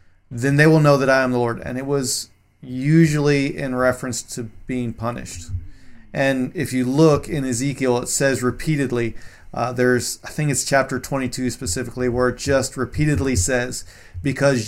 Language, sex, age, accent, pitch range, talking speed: English, male, 40-59, American, 115-135 Hz, 170 wpm